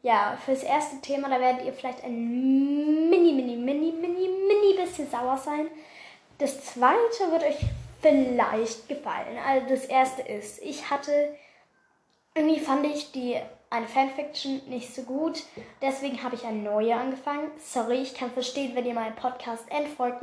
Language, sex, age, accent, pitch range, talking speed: German, female, 10-29, German, 240-295 Hz, 155 wpm